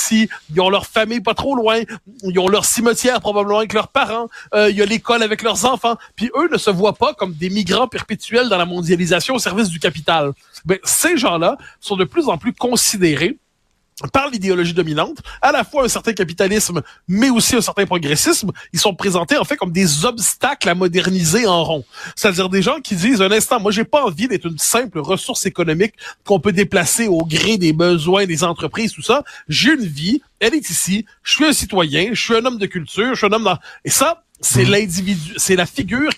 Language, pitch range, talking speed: French, 175-235 Hz, 215 wpm